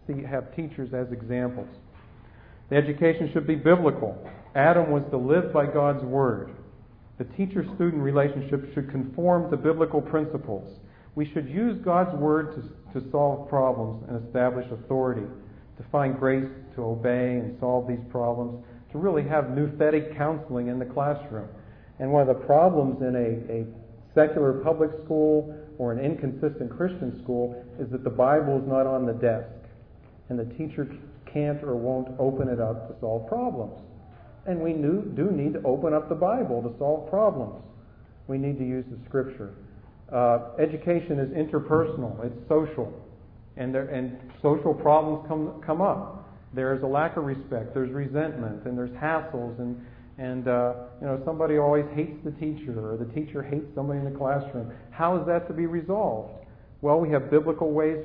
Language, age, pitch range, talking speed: English, 50-69, 120-155 Hz, 165 wpm